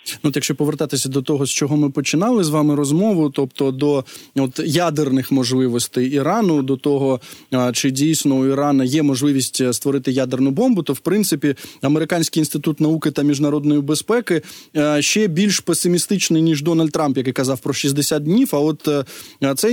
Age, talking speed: 20-39, 160 wpm